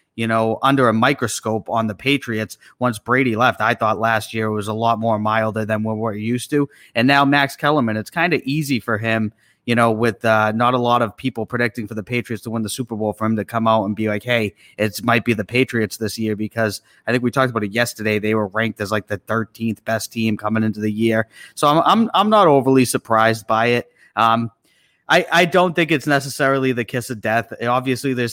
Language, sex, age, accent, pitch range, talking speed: English, male, 30-49, American, 110-130 Hz, 240 wpm